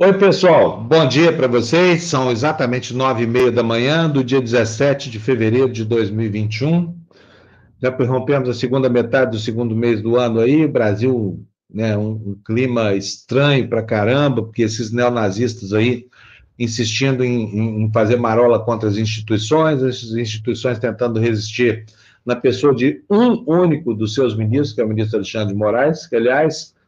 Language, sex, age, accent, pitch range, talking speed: Portuguese, male, 50-69, Brazilian, 115-150 Hz, 160 wpm